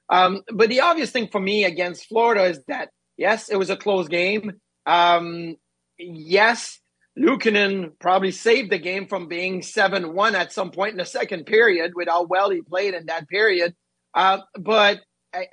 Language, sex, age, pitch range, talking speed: English, male, 30-49, 180-220 Hz, 175 wpm